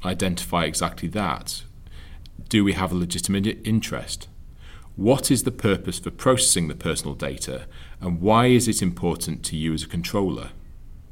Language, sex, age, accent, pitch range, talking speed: English, male, 40-59, British, 80-100 Hz, 150 wpm